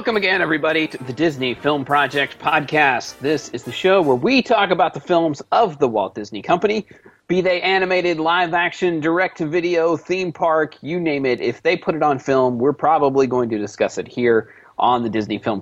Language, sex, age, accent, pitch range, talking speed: English, male, 30-49, American, 120-170 Hz, 200 wpm